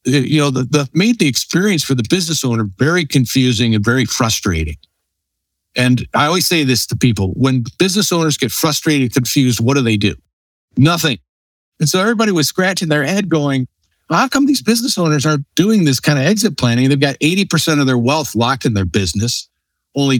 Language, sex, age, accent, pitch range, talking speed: English, male, 60-79, American, 110-150 Hz, 195 wpm